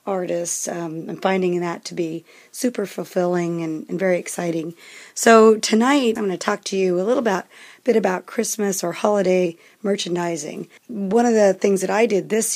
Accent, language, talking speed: American, English, 175 wpm